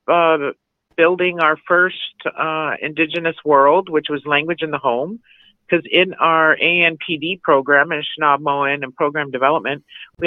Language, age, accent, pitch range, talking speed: English, 50-69, American, 135-170 Hz, 140 wpm